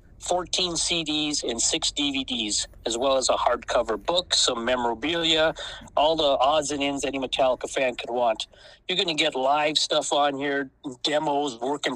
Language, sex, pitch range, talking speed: English, male, 130-155 Hz, 170 wpm